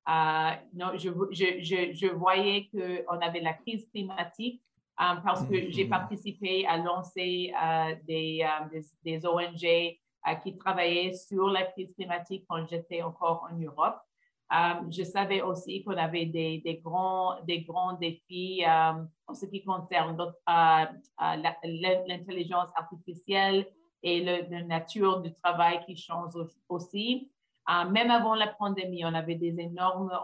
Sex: female